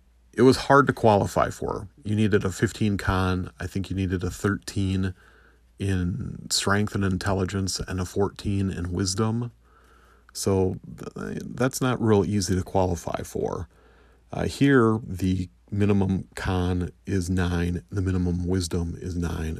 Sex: male